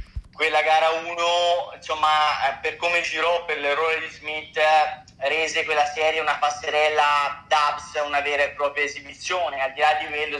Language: Italian